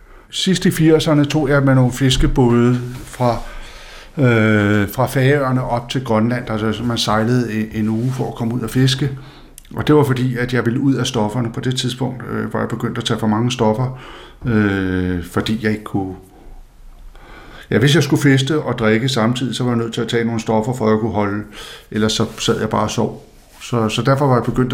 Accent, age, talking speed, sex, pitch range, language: native, 60-79, 210 wpm, male, 110-135 Hz, Danish